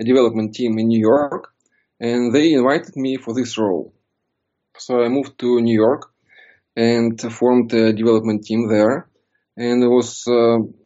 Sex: male